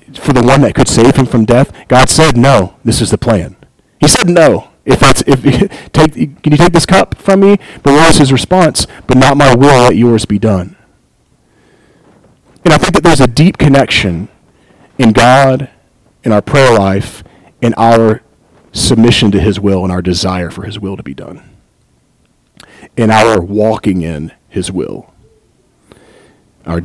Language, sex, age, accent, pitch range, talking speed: English, male, 40-59, American, 105-130 Hz, 175 wpm